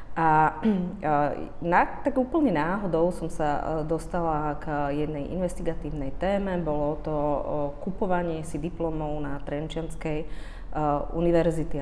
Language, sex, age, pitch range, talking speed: Slovak, female, 30-49, 145-170 Hz, 95 wpm